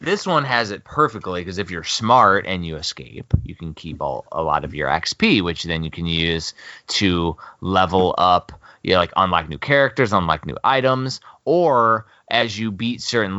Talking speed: 180 wpm